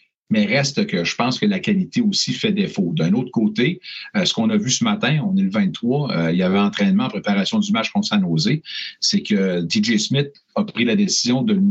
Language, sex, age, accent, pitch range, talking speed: French, male, 50-69, Canadian, 130-215 Hz, 230 wpm